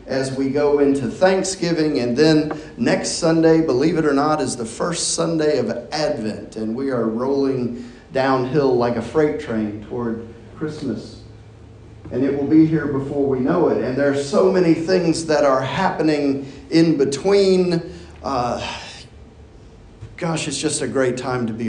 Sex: male